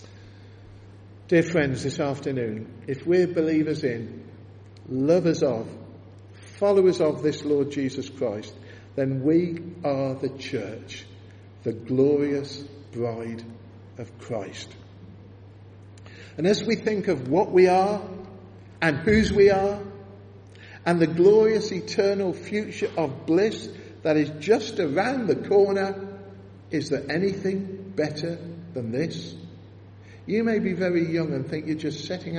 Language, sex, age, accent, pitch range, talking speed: English, male, 50-69, British, 100-160 Hz, 125 wpm